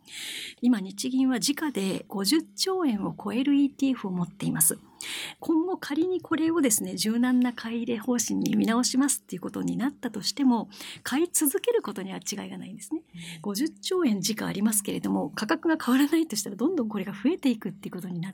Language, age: Japanese, 40-59